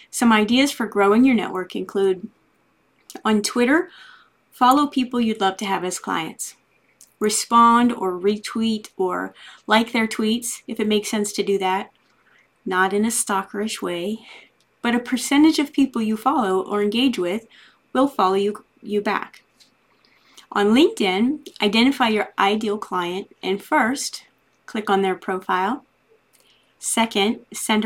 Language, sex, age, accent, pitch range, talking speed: English, female, 30-49, American, 200-250 Hz, 140 wpm